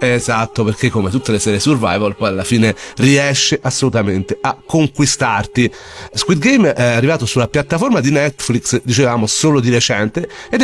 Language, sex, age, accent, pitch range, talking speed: Italian, male, 40-59, native, 110-140 Hz, 150 wpm